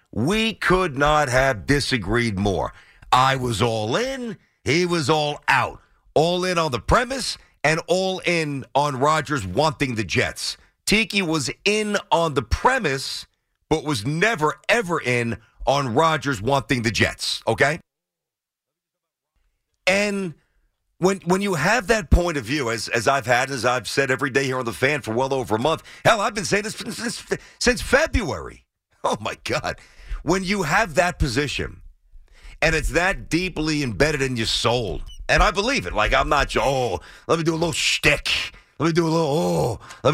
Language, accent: English, American